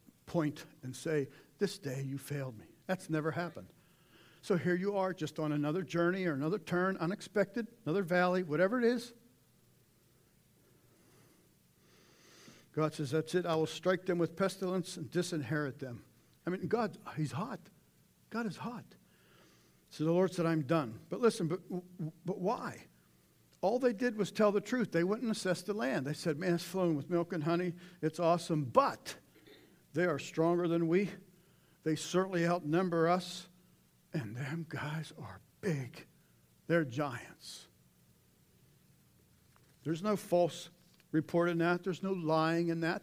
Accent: American